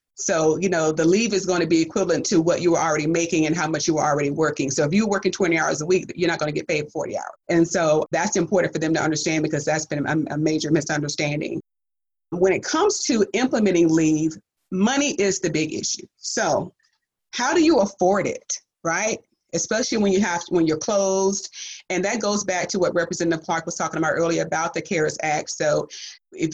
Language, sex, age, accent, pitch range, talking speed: English, female, 30-49, American, 160-195 Hz, 220 wpm